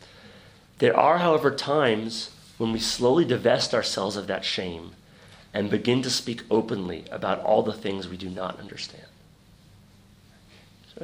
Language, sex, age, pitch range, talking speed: English, male, 30-49, 100-130 Hz, 140 wpm